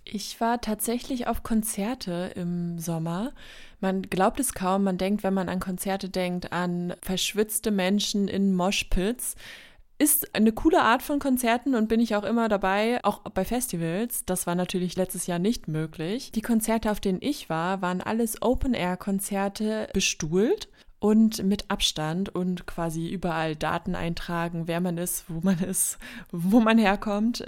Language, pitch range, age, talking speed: German, 175-220 Hz, 20-39, 155 wpm